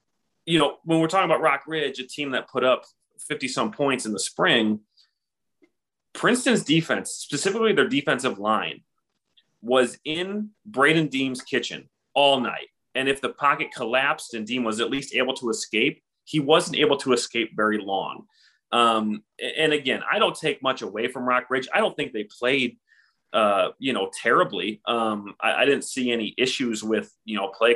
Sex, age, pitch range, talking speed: male, 30-49, 110-155 Hz, 175 wpm